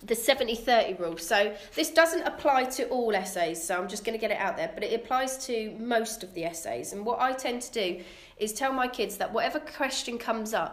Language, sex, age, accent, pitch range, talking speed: English, female, 30-49, British, 185-230 Hz, 235 wpm